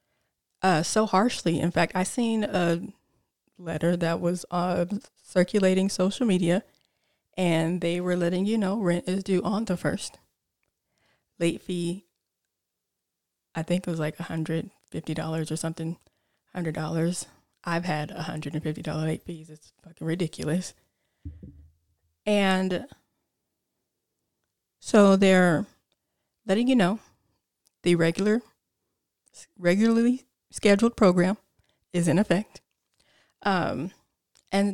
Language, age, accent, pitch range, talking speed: English, 20-39, American, 165-210 Hz, 105 wpm